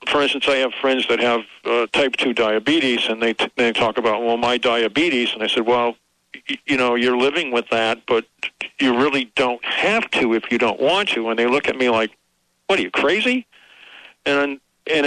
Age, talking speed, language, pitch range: 50-69, 210 wpm, English, 120-135 Hz